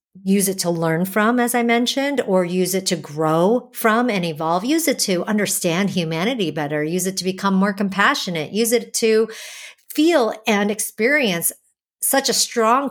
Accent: American